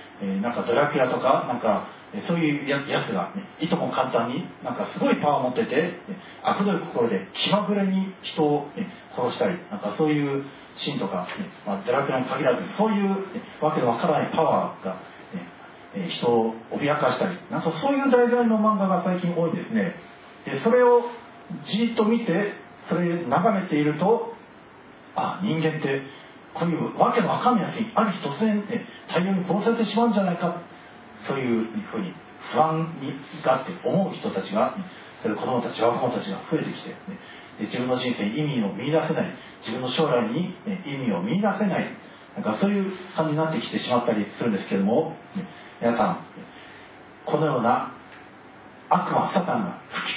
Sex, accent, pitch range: male, native, 150-215 Hz